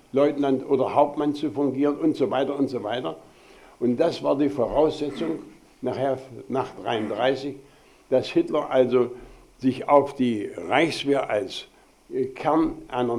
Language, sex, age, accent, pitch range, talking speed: German, male, 60-79, German, 130-155 Hz, 125 wpm